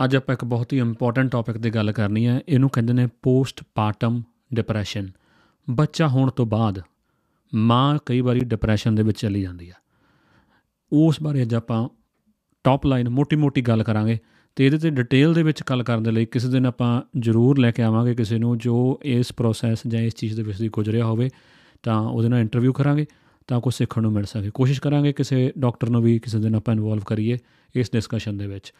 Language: Punjabi